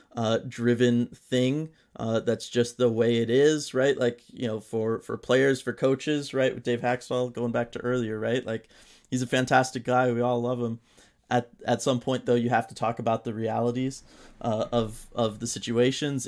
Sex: male